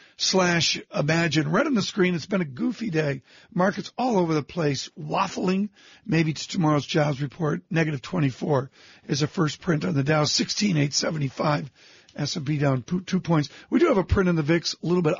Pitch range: 155-190 Hz